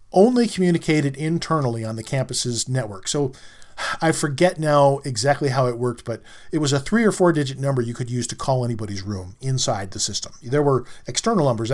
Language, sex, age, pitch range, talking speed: English, male, 40-59, 120-170 Hz, 195 wpm